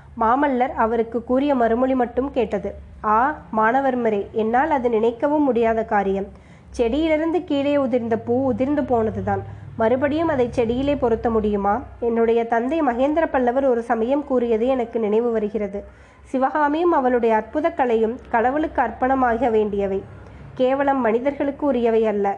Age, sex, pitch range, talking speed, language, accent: 20-39, female, 220-275 Hz, 125 wpm, Tamil, native